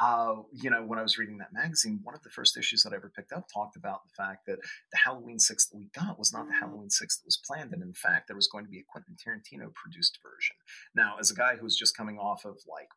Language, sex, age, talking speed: English, male, 30-49, 285 wpm